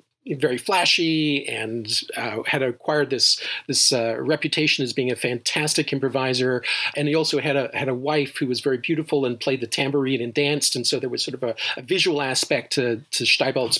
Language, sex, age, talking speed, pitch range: English, male, 40-59, 200 wpm, 130-155 Hz